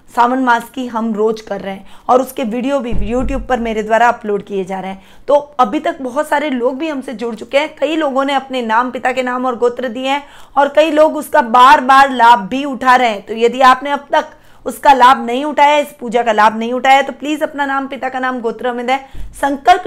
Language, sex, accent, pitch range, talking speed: Hindi, female, native, 230-280 Hz, 240 wpm